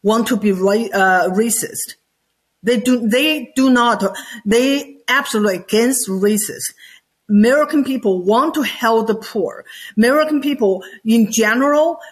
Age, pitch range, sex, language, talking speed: 50-69, 195-240 Hz, female, English, 125 wpm